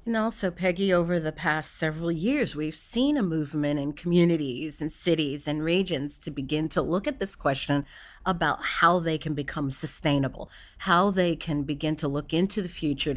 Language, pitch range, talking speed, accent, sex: English, 150-195 Hz, 180 wpm, American, female